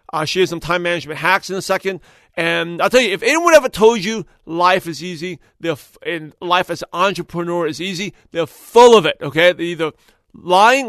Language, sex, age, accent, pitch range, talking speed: English, male, 40-59, American, 160-210 Hz, 205 wpm